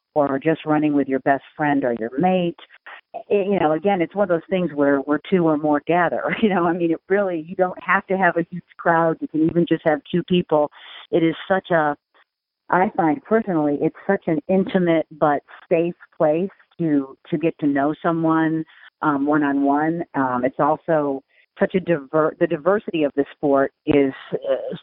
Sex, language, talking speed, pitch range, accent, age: female, English, 200 wpm, 140-170 Hz, American, 50-69